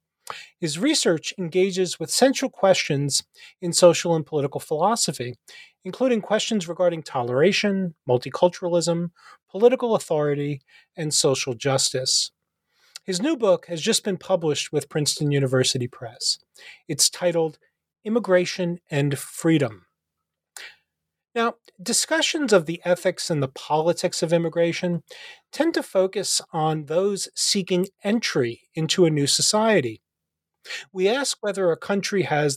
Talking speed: 120 wpm